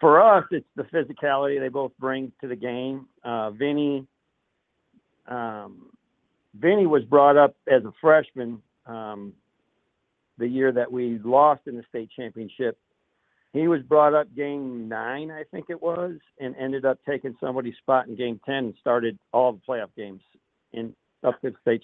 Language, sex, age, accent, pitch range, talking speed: English, male, 50-69, American, 120-135 Hz, 170 wpm